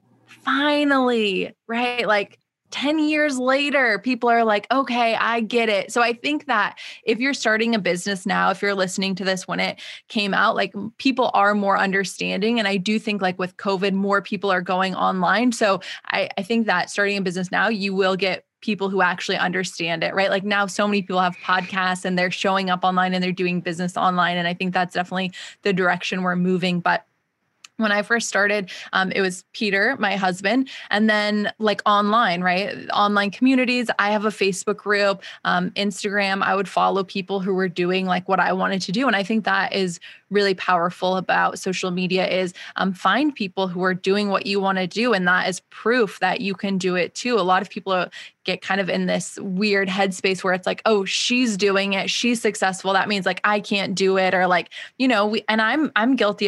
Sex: female